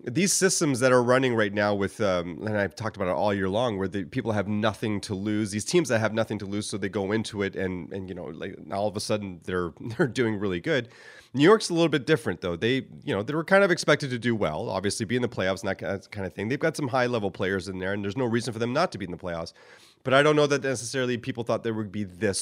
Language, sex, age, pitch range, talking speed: English, male, 30-49, 105-140 Hz, 295 wpm